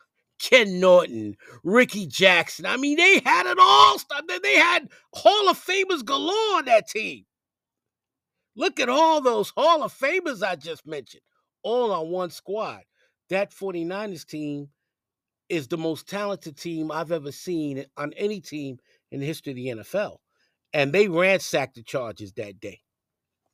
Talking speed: 155 wpm